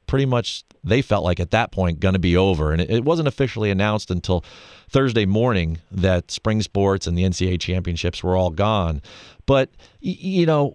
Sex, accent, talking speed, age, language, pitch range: male, American, 185 wpm, 40-59, English, 95-135 Hz